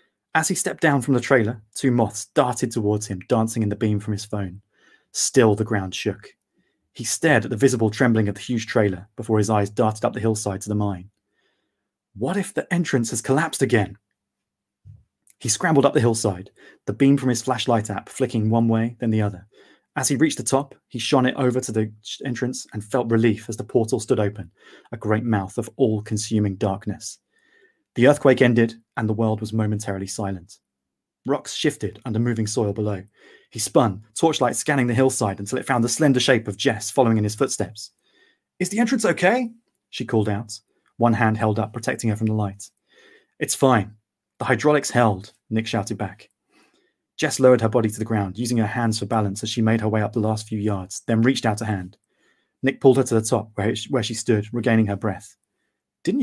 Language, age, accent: English, 30-49, British